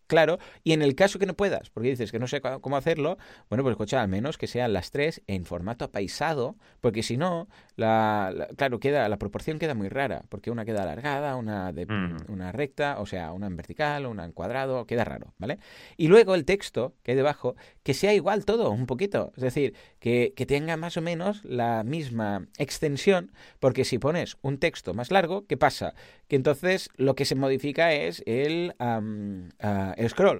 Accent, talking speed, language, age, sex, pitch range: Spanish, 200 wpm, Spanish, 30-49, male, 110-150 Hz